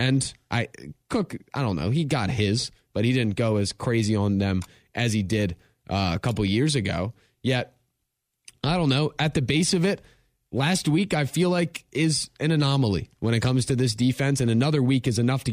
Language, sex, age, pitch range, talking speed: English, male, 20-39, 110-145 Hz, 210 wpm